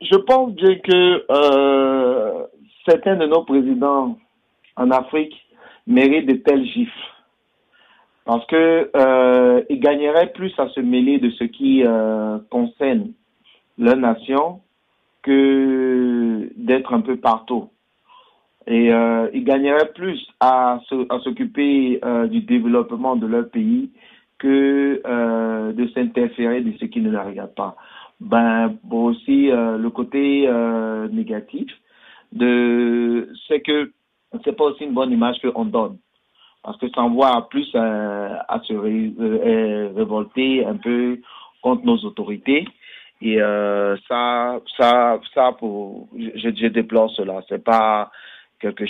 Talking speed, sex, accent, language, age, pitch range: 135 wpm, male, French, French, 60-79, 115-160 Hz